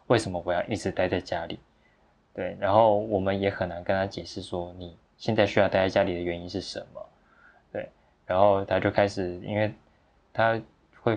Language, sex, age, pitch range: Chinese, male, 20-39, 90-105 Hz